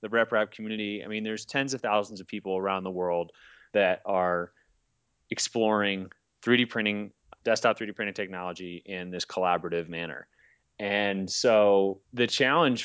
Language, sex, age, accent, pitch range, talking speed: English, male, 20-39, American, 100-115 Hz, 145 wpm